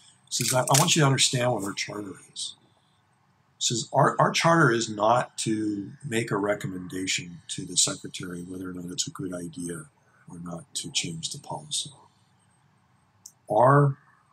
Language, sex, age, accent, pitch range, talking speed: English, male, 50-69, American, 105-140 Hz, 155 wpm